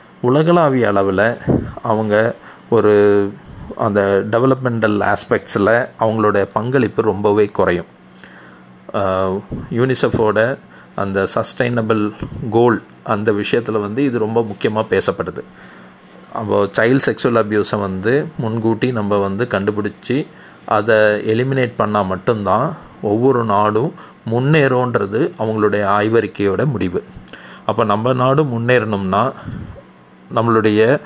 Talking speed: 90 wpm